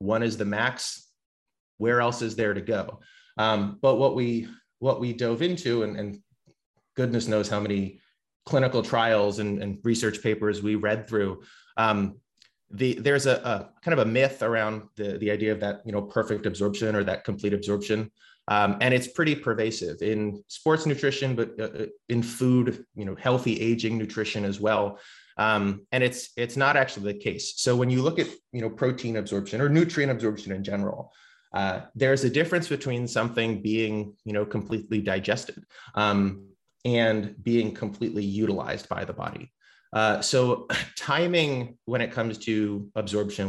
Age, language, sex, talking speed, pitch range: 30-49, English, male, 170 wpm, 105-125 Hz